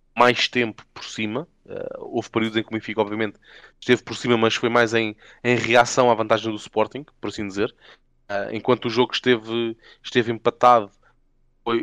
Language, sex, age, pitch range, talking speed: Portuguese, male, 20-39, 105-120 Hz, 170 wpm